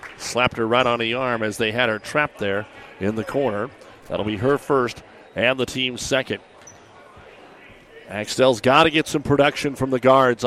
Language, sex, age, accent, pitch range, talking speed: English, male, 50-69, American, 120-135 Hz, 185 wpm